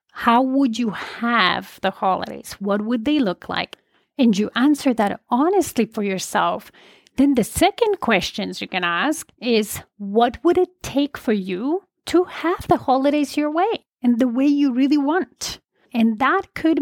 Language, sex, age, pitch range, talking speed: English, female, 30-49, 220-285 Hz, 170 wpm